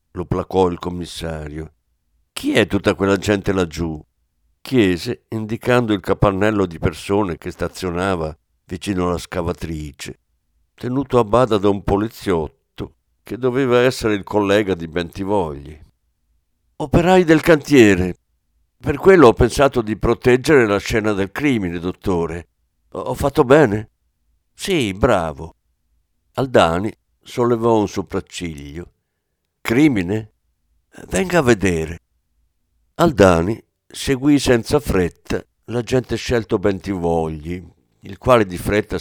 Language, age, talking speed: Italian, 60-79, 110 wpm